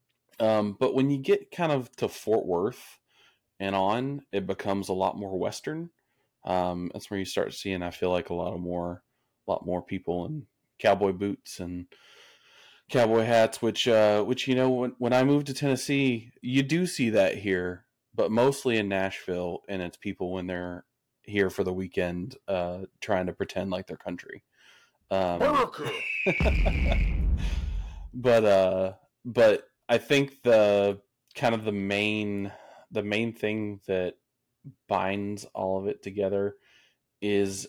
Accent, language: American, English